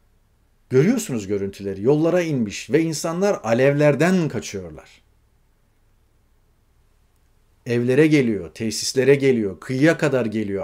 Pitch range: 105-145 Hz